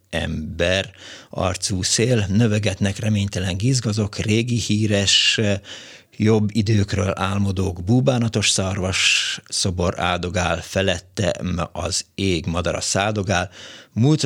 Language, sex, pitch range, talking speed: Hungarian, male, 90-110 Hz, 95 wpm